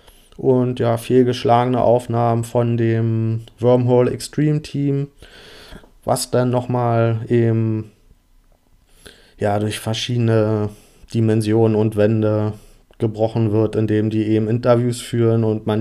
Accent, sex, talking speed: German, male, 110 wpm